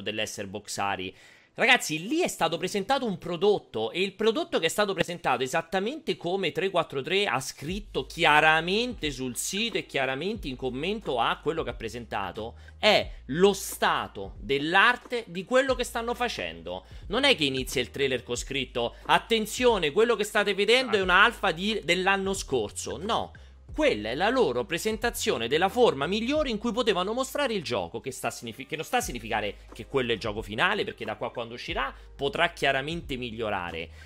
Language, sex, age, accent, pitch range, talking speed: Italian, male, 30-49, native, 135-215 Hz, 170 wpm